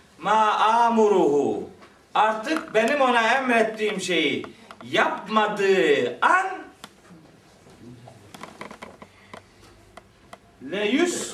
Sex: male